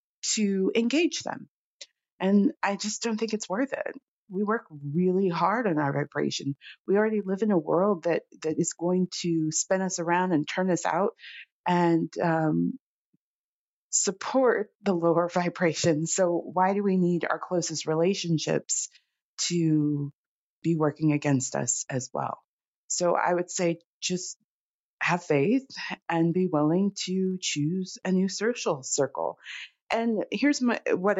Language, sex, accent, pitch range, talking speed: English, female, American, 155-190 Hz, 150 wpm